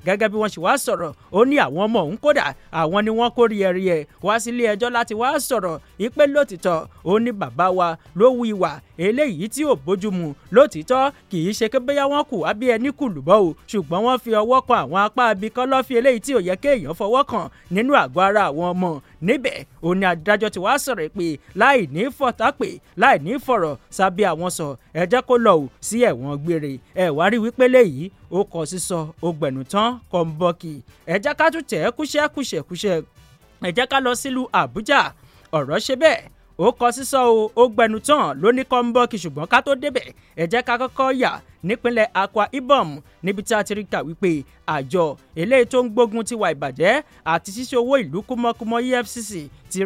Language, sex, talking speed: English, male, 150 wpm